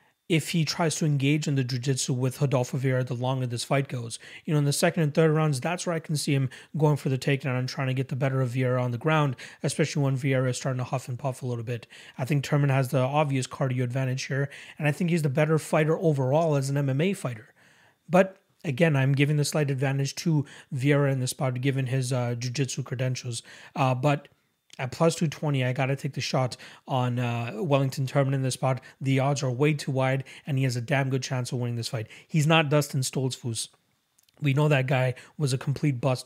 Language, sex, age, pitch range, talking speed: English, male, 30-49, 130-155 Hz, 235 wpm